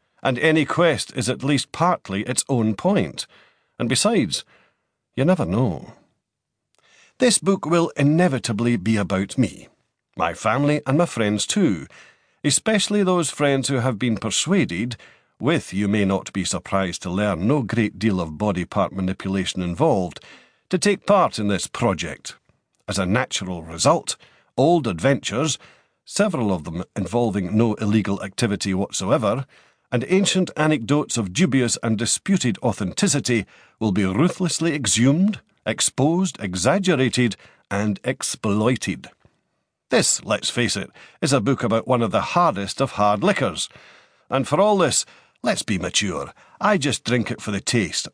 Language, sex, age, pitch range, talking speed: English, male, 50-69, 105-155 Hz, 145 wpm